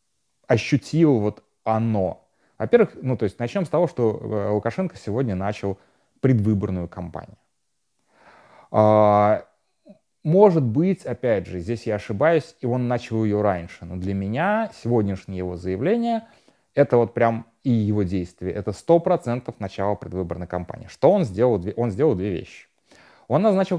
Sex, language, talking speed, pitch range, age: male, Russian, 135 wpm, 105-140 Hz, 30-49